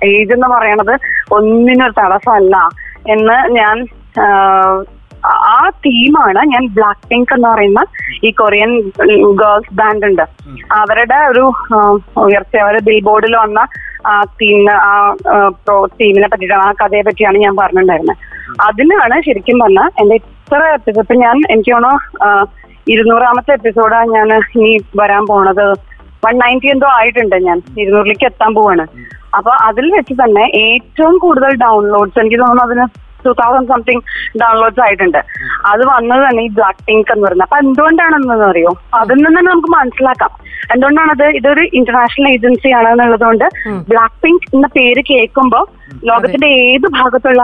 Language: Malayalam